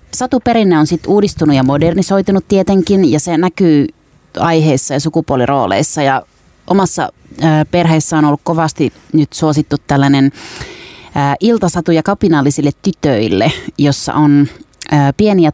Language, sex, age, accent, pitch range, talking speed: Finnish, female, 30-49, native, 140-165 Hz, 115 wpm